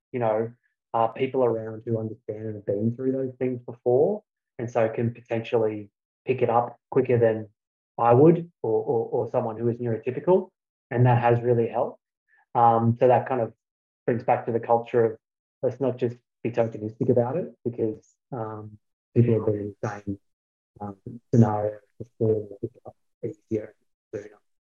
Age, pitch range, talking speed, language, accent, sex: 20-39, 110-125 Hz, 155 wpm, English, Australian, male